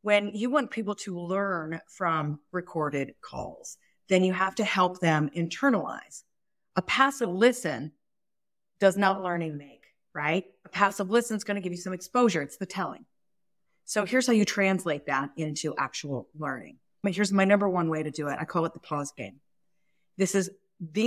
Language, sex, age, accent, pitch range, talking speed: English, female, 40-59, American, 155-195 Hz, 180 wpm